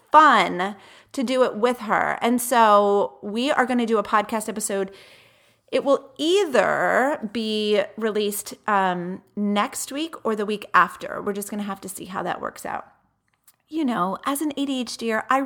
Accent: American